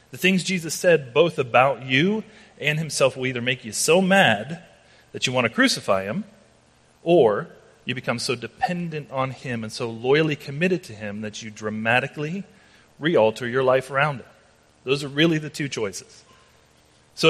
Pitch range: 105-150 Hz